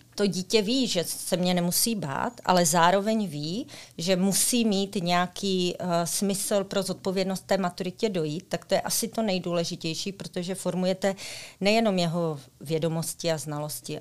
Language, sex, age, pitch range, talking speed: Czech, female, 40-59, 170-200 Hz, 145 wpm